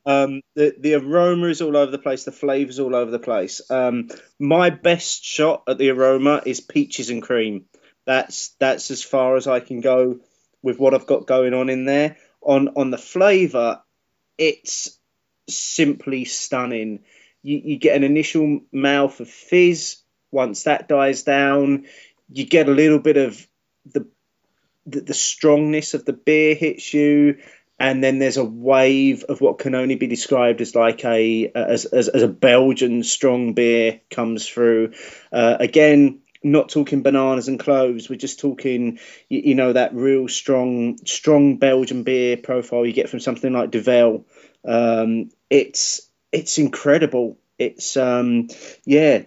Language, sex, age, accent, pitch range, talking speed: English, male, 30-49, British, 125-145 Hz, 160 wpm